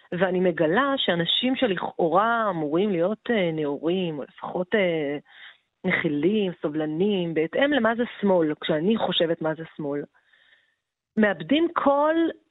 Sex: female